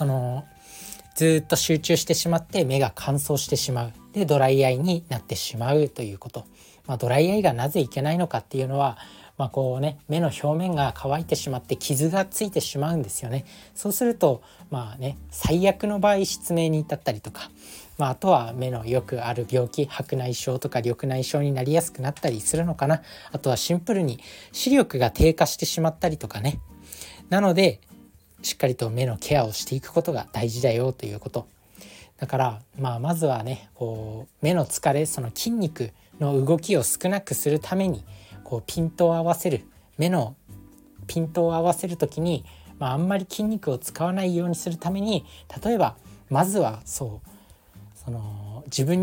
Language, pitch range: Japanese, 120-165 Hz